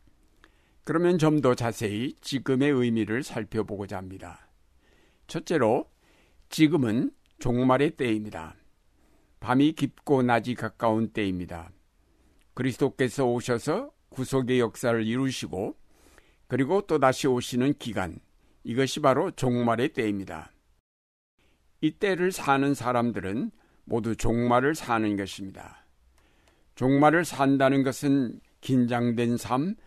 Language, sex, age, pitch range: Korean, male, 60-79, 100-135 Hz